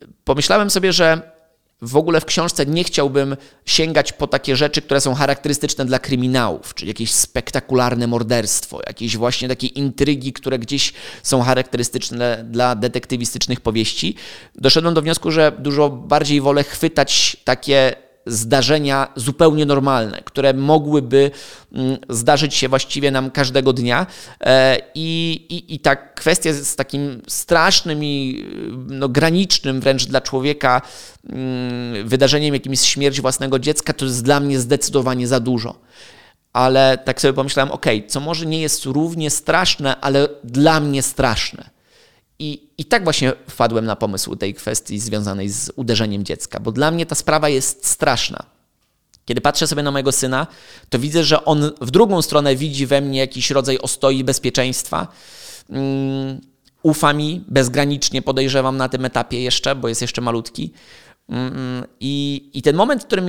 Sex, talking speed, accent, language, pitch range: male, 145 wpm, native, Polish, 130-150 Hz